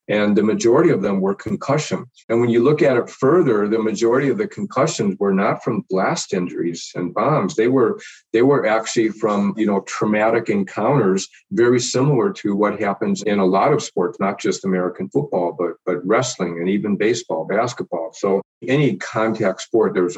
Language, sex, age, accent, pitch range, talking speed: English, male, 50-69, American, 100-125 Hz, 185 wpm